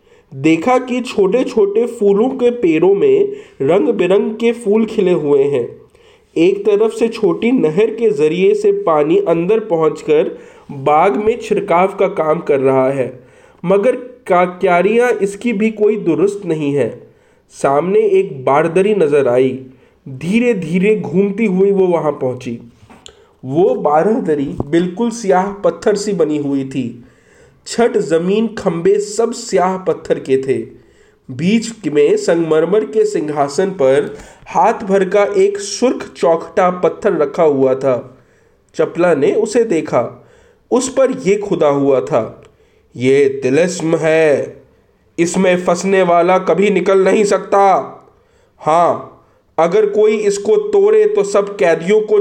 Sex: male